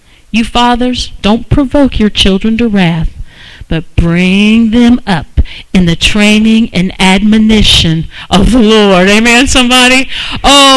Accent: American